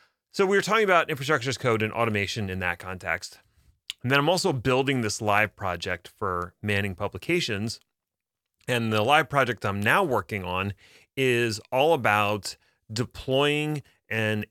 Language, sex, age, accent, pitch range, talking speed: English, male, 30-49, American, 100-130 Hz, 150 wpm